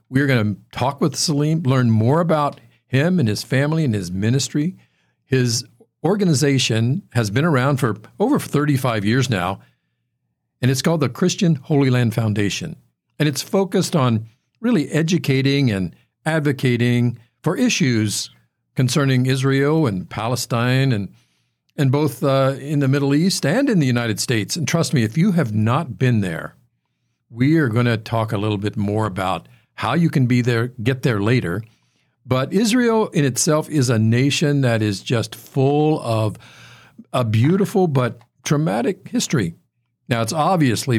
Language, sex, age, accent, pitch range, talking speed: English, male, 50-69, American, 110-150 Hz, 160 wpm